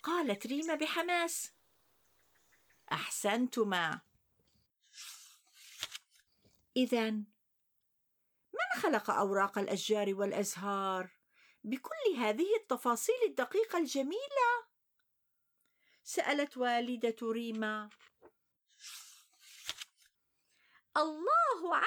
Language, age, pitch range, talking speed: Arabic, 50-69, 195-325 Hz, 50 wpm